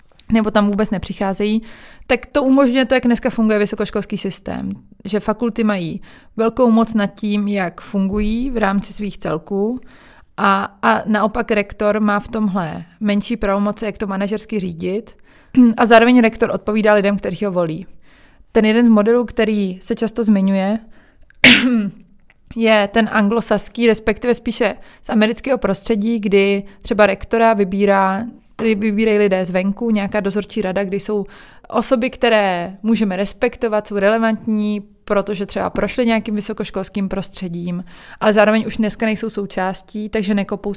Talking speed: 140 wpm